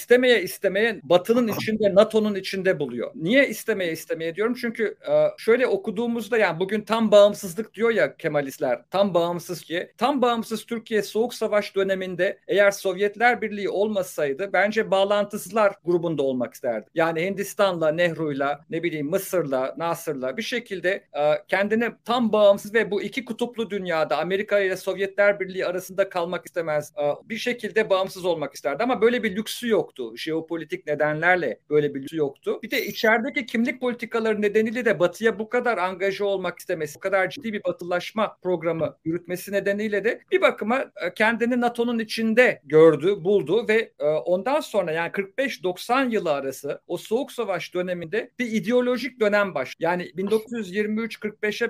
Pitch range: 175-225 Hz